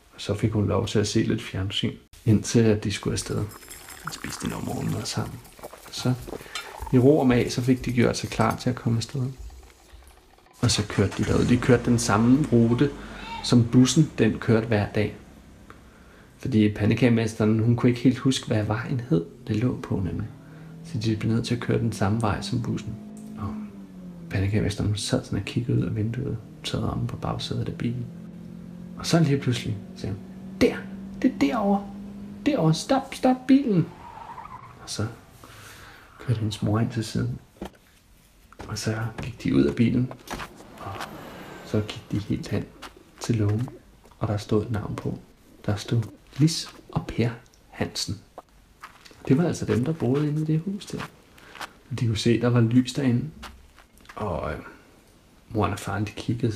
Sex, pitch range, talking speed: male, 105-130 Hz, 175 wpm